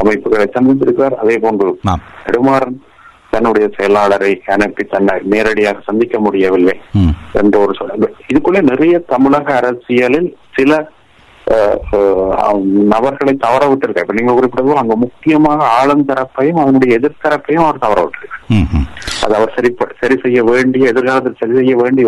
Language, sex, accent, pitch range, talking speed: Tamil, male, native, 105-140 Hz, 65 wpm